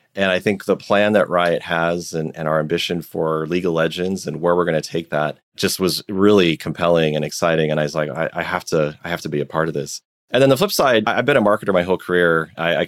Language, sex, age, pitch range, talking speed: English, male, 30-49, 80-95 Hz, 270 wpm